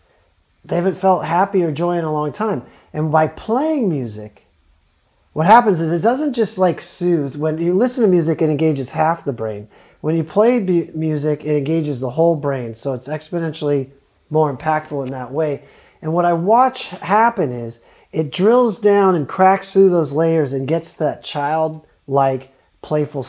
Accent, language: American, English